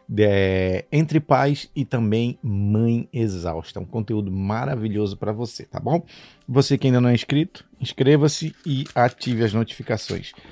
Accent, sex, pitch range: Brazilian, male, 105-145 Hz